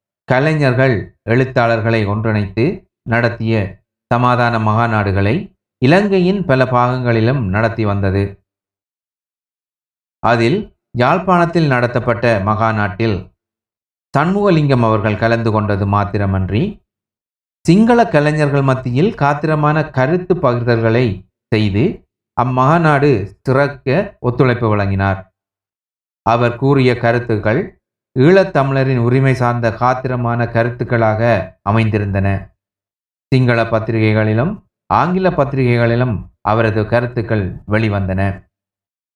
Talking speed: 70 wpm